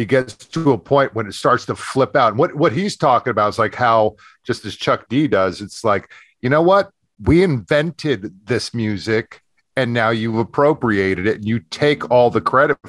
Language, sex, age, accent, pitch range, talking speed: English, male, 50-69, American, 105-145 Hz, 205 wpm